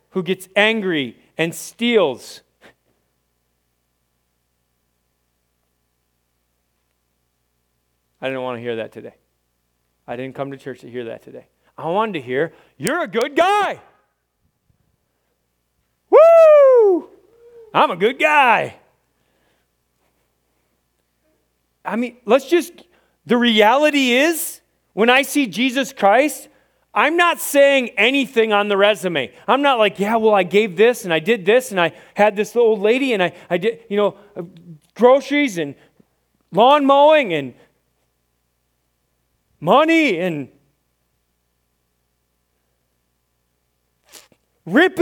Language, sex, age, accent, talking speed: English, male, 40-59, American, 115 wpm